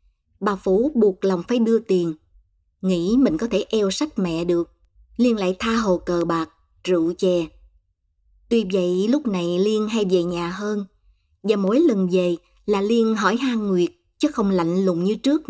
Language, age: Vietnamese, 20-39